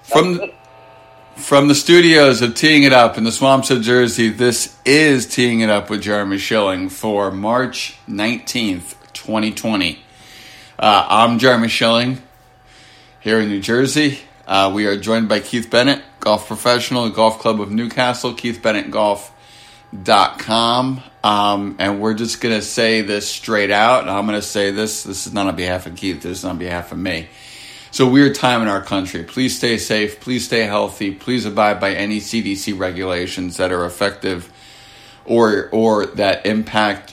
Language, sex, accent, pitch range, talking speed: English, male, American, 100-125 Hz, 165 wpm